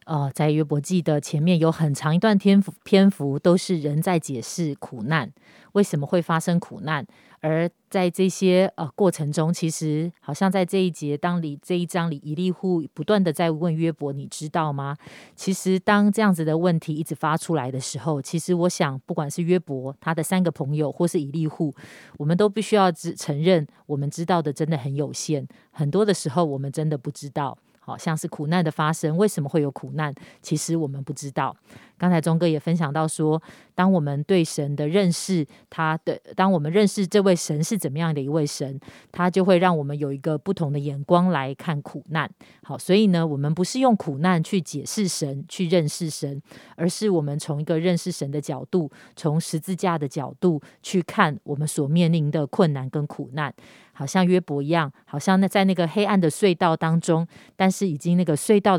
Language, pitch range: Chinese, 150-180 Hz